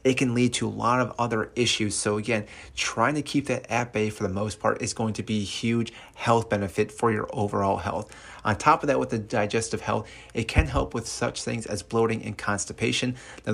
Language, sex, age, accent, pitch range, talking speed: English, male, 30-49, American, 105-125 Hz, 230 wpm